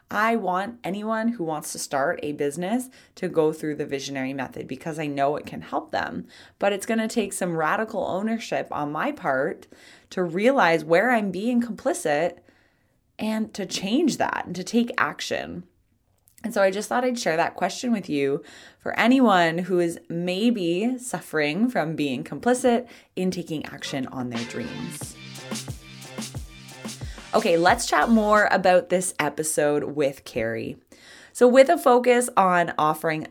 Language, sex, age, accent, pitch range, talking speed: English, female, 20-39, American, 155-225 Hz, 160 wpm